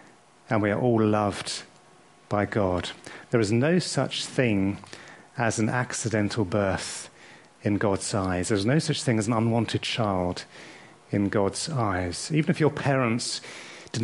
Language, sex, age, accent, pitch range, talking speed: English, male, 40-59, British, 110-135 Hz, 150 wpm